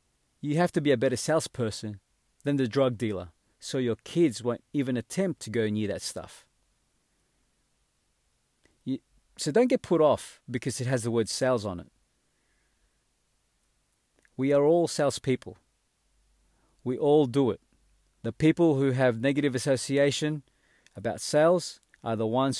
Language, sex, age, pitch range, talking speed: English, male, 40-59, 110-140 Hz, 145 wpm